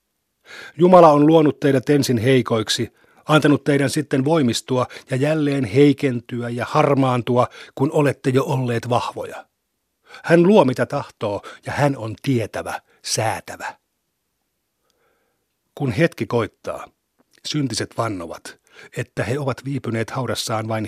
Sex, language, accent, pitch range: male, Finnish, native, 120-150 Hz